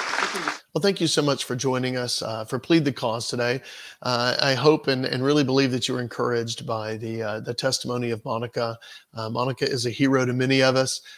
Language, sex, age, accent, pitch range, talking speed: English, male, 40-59, American, 120-140 Hz, 220 wpm